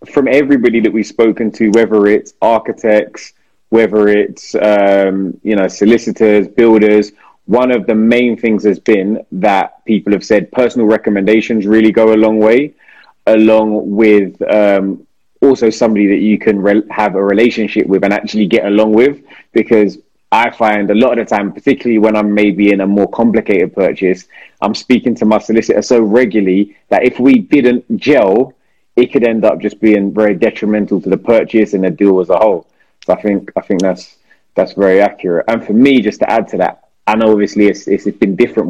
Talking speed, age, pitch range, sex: 190 wpm, 20-39, 100-115 Hz, male